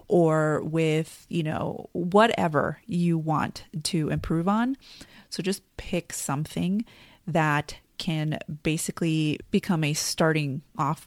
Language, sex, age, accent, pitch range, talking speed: English, female, 30-49, American, 155-175 Hz, 115 wpm